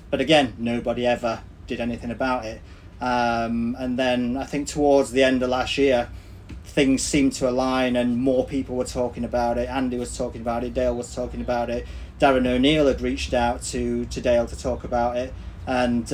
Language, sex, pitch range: English, male, 120-135 Hz